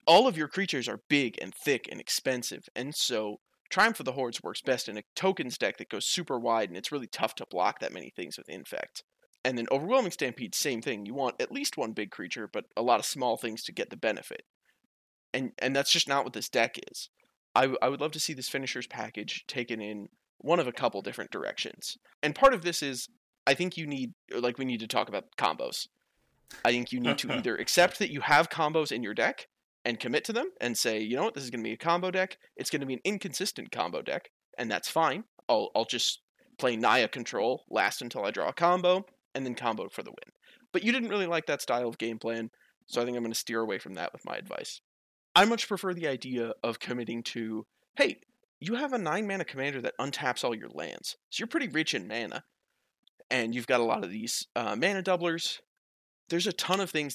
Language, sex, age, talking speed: English, male, 20-39, 235 wpm